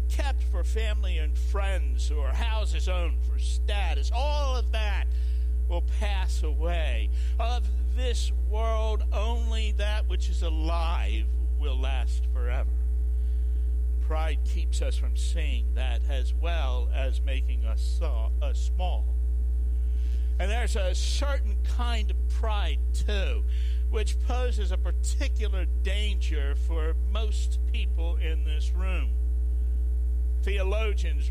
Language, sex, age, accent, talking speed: English, male, 60-79, American, 115 wpm